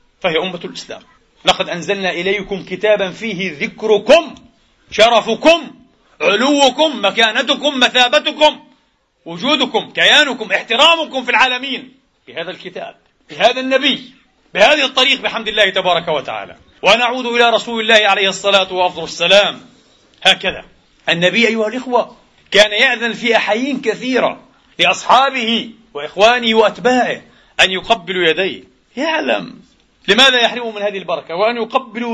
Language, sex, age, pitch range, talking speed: Arabic, male, 40-59, 195-250 Hz, 110 wpm